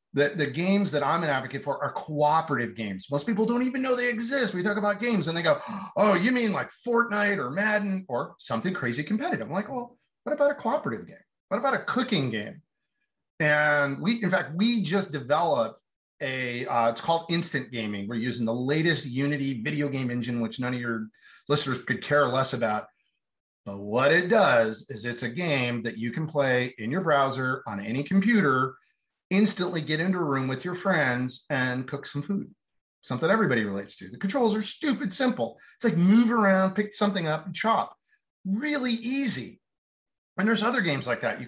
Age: 40-59